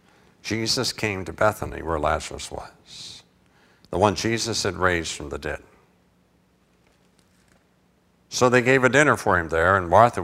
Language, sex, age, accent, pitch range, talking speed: English, male, 60-79, American, 95-130 Hz, 145 wpm